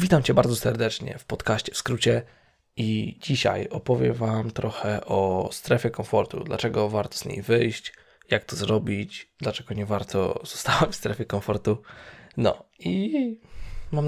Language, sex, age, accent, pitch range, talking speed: Polish, male, 20-39, native, 100-120 Hz, 145 wpm